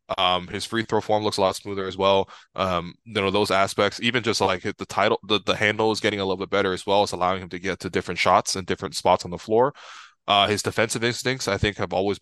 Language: English